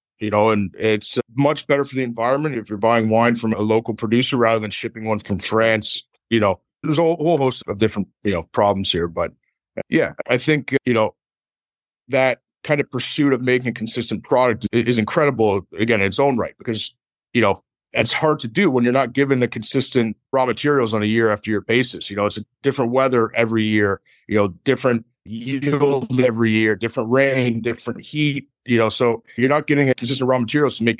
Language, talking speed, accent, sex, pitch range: English, 205 wpm, American, male, 115-135 Hz